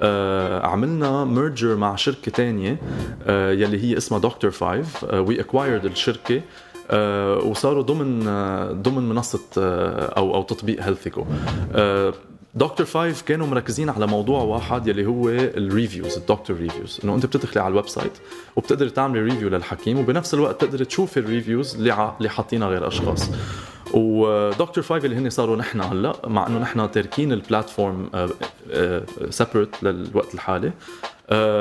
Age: 20-39